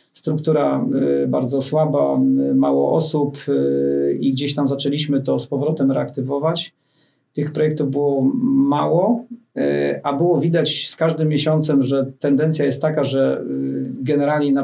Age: 40-59